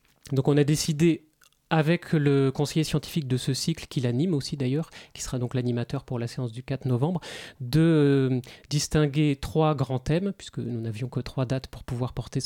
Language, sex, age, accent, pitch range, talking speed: French, male, 30-49, French, 130-155 Hz, 190 wpm